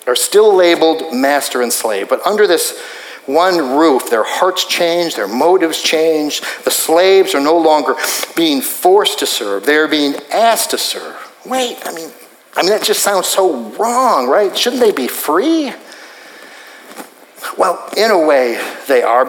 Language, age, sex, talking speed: English, 50-69, male, 165 wpm